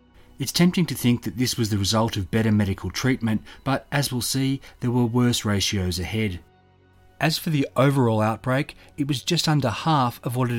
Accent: Australian